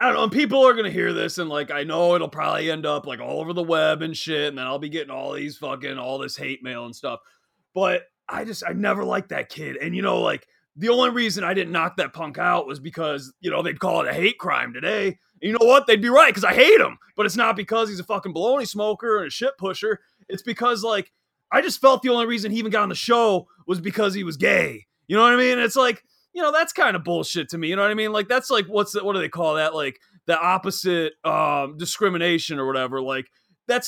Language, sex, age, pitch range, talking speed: English, male, 30-49, 170-235 Hz, 270 wpm